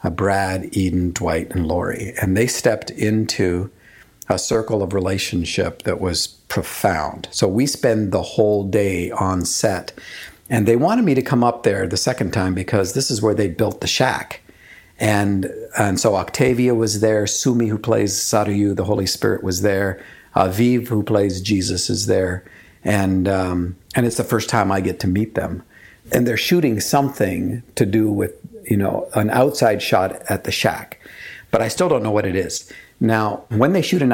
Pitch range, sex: 95-115 Hz, male